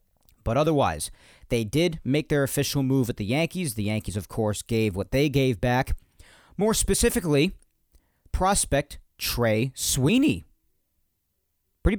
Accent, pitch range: American, 95-150 Hz